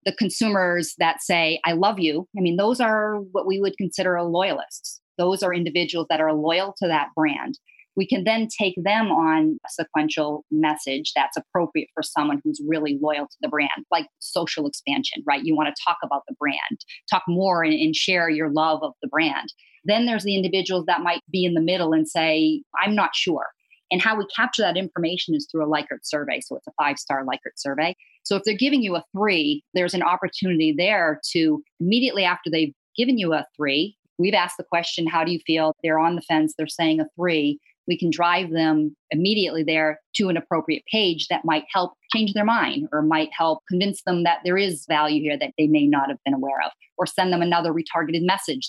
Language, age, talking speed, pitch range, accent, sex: English, 30-49, 215 wpm, 155-195 Hz, American, female